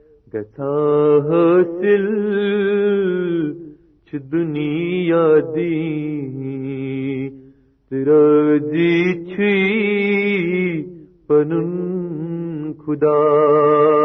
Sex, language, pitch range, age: male, Urdu, 150-205 Hz, 40-59